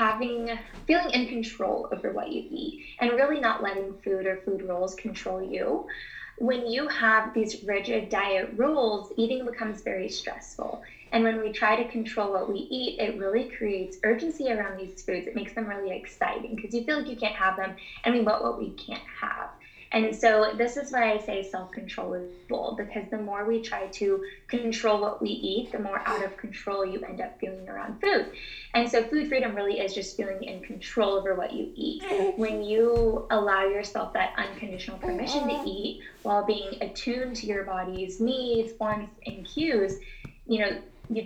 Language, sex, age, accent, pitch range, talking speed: English, female, 10-29, American, 195-235 Hz, 190 wpm